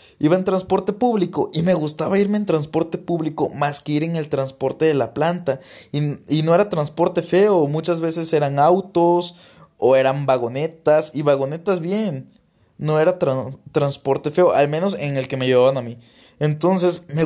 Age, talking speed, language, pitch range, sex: 20-39, 180 wpm, Spanish, 140-175 Hz, male